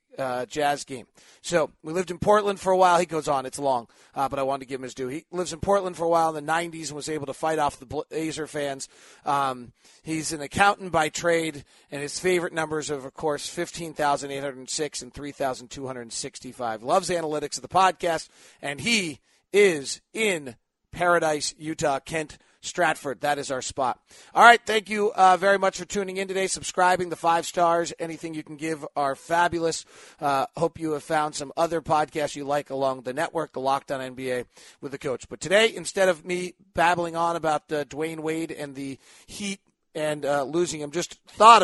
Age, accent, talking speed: 40-59, American, 195 wpm